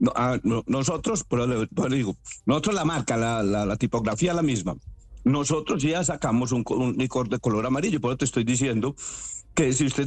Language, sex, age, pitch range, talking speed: Spanish, male, 60-79, 130-180 Hz, 195 wpm